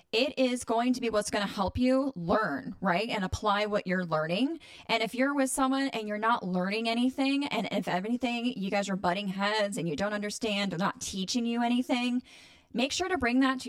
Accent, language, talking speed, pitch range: American, English, 220 wpm, 180-245 Hz